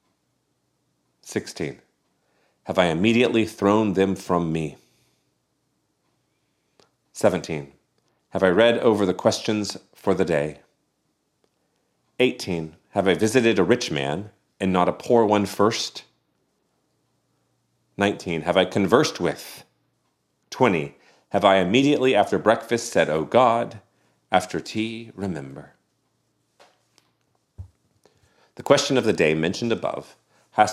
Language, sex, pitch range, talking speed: English, male, 80-110 Hz, 110 wpm